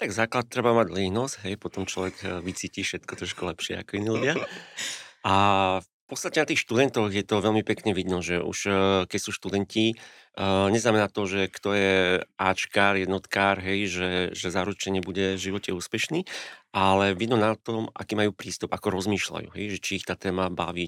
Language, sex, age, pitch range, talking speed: Slovak, male, 40-59, 95-105 Hz, 180 wpm